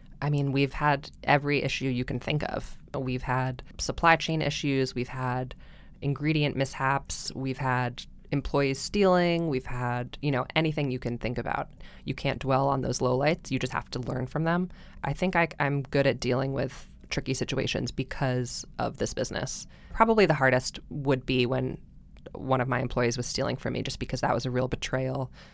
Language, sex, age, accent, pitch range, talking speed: English, female, 20-39, American, 125-140 Hz, 185 wpm